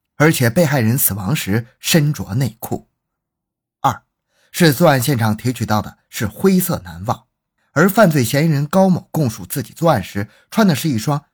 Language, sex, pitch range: Chinese, male, 110-170 Hz